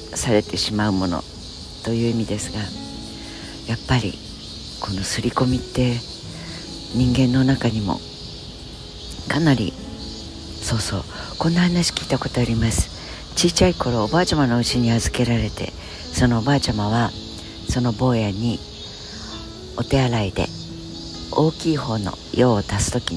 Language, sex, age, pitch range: Japanese, female, 60-79, 100-130 Hz